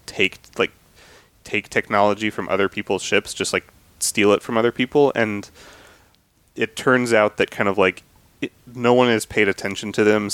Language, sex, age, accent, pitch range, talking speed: English, male, 30-49, American, 95-115 Hz, 175 wpm